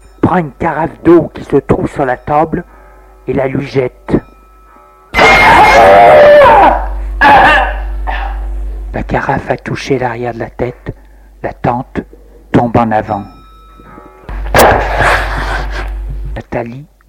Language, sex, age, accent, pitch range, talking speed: French, male, 60-79, French, 110-165 Hz, 100 wpm